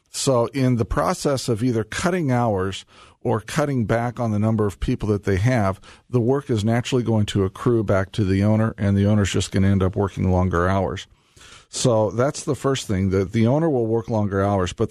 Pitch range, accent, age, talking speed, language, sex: 100-125 Hz, American, 50-69, 215 wpm, English, male